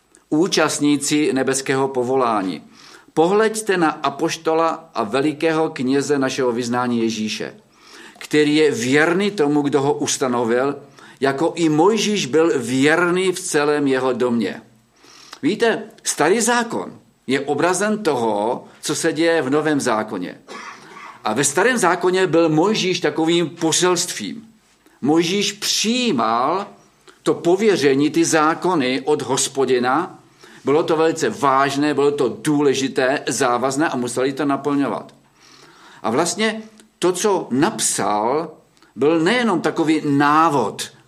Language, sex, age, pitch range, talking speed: Czech, male, 50-69, 135-175 Hz, 110 wpm